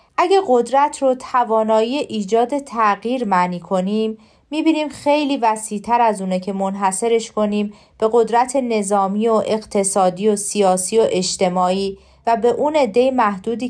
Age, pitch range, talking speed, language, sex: 40-59, 195-255 Hz, 130 wpm, Persian, female